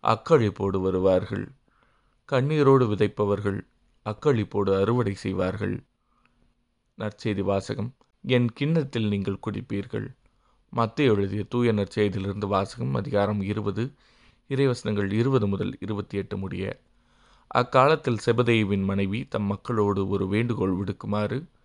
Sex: male